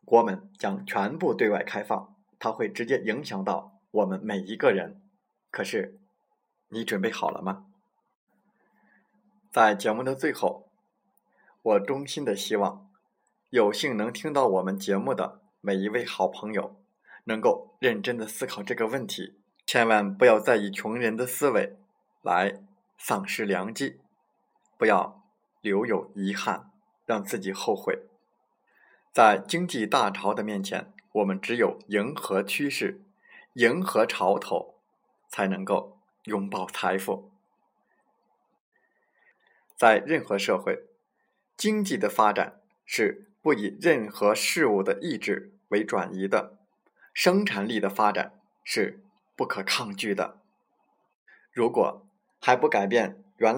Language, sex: Chinese, male